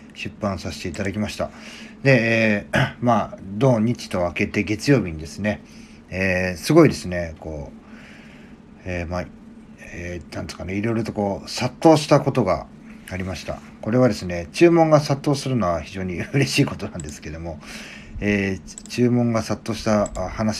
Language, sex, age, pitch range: Japanese, male, 40-59, 90-125 Hz